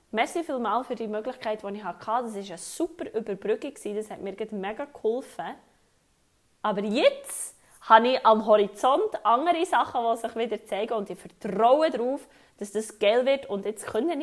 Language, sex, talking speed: German, female, 175 wpm